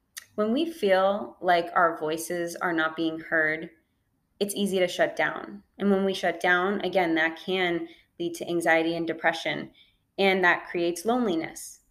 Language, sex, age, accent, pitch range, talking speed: English, female, 20-39, American, 170-205 Hz, 160 wpm